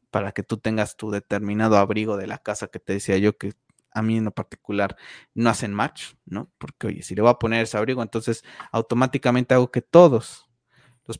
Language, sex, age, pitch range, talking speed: Spanish, male, 20-39, 105-125 Hz, 210 wpm